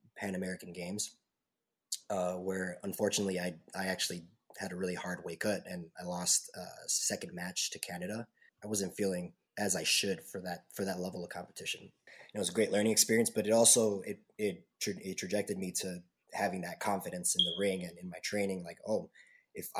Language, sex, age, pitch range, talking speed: English, male, 20-39, 90-100 Hz, 195 wpm